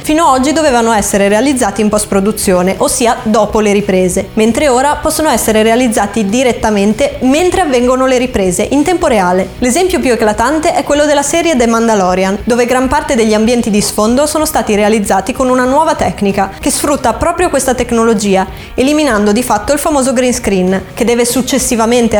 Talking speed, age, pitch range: 170 wpm, 20-39, 215-280 Hz